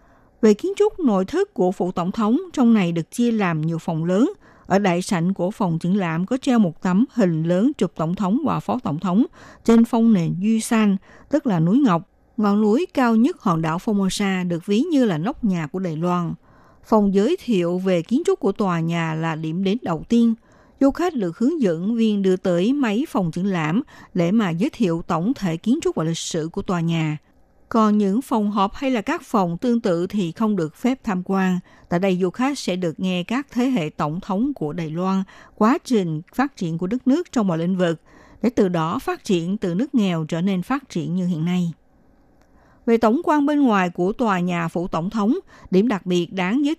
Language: Vietnamese